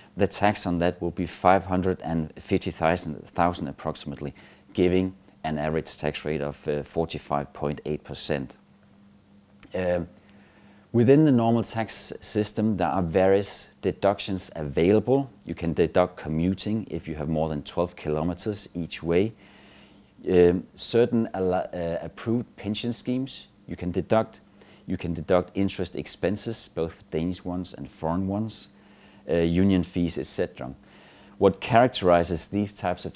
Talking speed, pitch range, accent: 125 wpm, 85-100 Hz, native